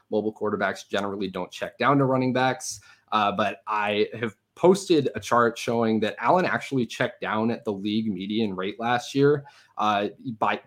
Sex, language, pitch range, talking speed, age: male, English, 105-125 Hz, 175 wpm, 20-39